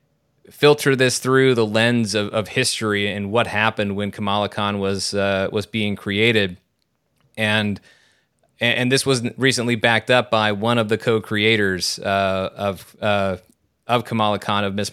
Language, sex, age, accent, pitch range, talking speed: English, male, 30-49, American, 105-120 Hz, 160 wpm